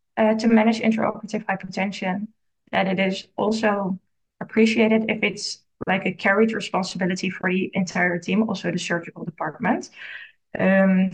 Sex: female